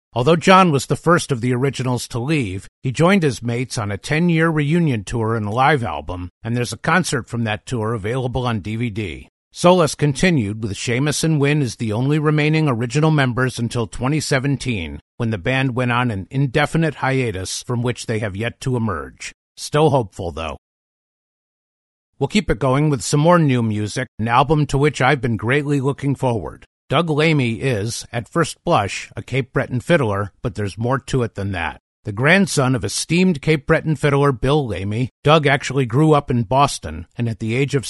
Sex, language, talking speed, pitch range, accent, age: male, English, 190 wpm, 115-150 Hz, American, 50-69